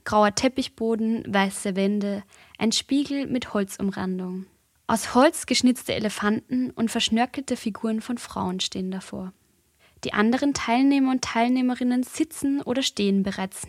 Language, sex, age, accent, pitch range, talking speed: German, female, 20-39, German, 200-250 Hz, 125 wpm